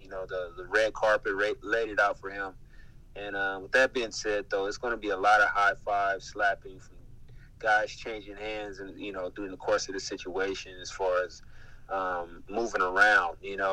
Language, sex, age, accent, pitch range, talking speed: English, male, 30-49, American, 95-115 Hz, 205 wpm